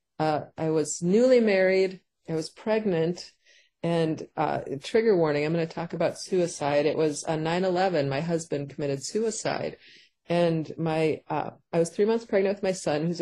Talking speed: 170 wpm